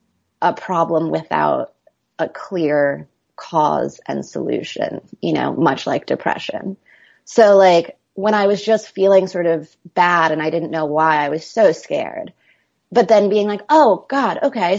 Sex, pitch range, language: female, 170-225 Hz, English